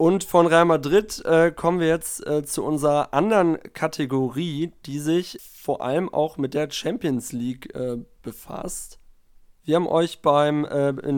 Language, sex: German, male